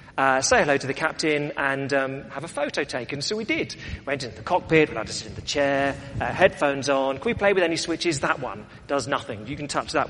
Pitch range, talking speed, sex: 130-175 Hz, 255 wpm, male